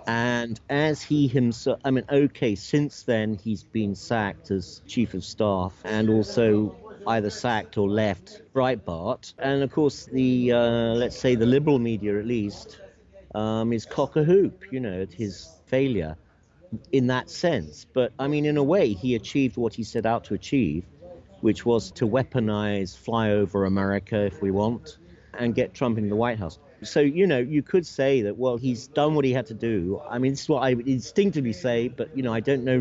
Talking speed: 195 wpm